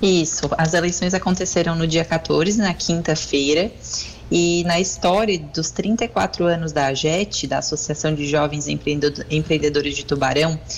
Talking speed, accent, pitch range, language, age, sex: 135 wpm, Brazilian, 155-200 Hz, Portuguese, 20-39, female